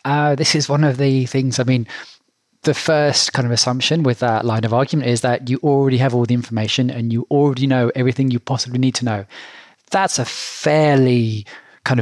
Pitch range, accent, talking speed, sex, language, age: 125-145 Hz, British, 205 wpm, male, English, 20-39